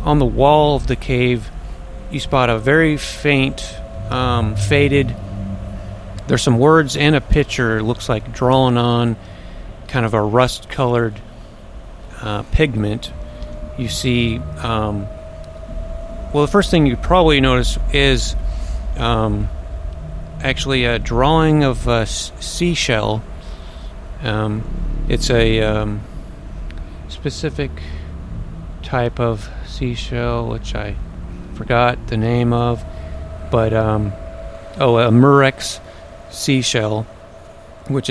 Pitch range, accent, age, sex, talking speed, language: 95-125 Hz, American, 40-59, male, 110 wpm, English